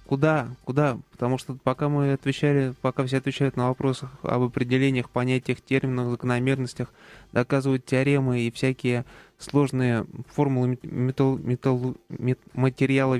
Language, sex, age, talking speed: Russian, male, 20-39, 115 wpm